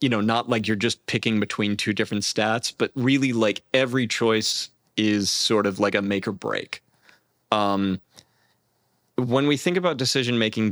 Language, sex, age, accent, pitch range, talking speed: English, male, 30-49, American, 105-125 Hz, 170 wpm